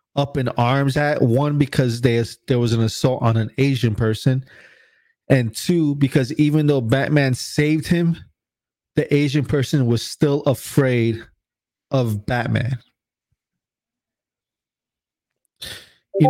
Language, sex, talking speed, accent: English, male, 115 wpm, American